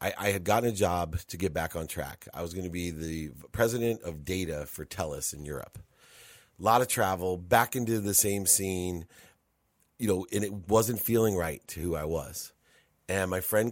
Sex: male